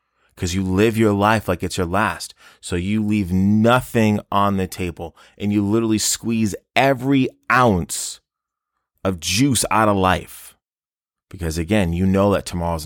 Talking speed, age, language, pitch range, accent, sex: 155 wpm, 30-49, English, 85-110 Hz, American, male